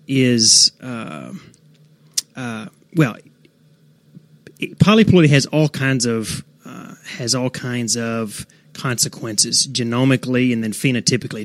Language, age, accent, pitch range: English, 30-49, American, 115-150 Hz